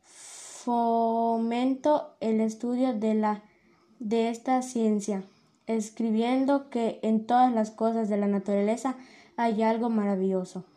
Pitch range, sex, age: 220-255 Hz, female, 20-39